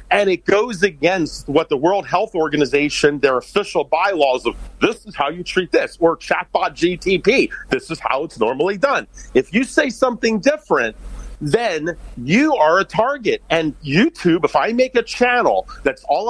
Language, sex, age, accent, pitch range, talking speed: English, male, 40-59, American, 150-210 Hz, 175 wpm